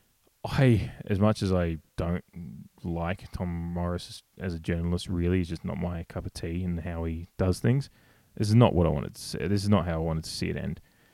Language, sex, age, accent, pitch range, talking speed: English, male, 20-39, Australian, 85-100 Hz, 230 wpm